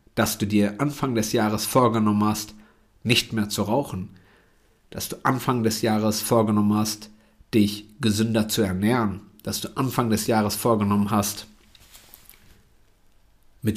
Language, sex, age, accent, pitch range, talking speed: German, male, 50-69, German, 105-140 Hz, 135 wpm